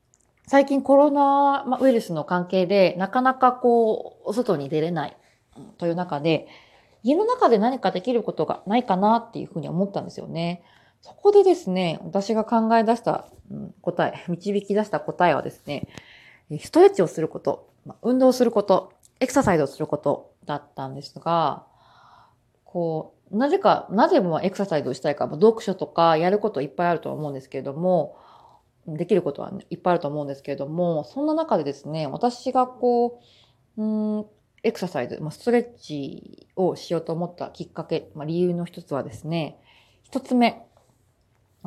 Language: Japanese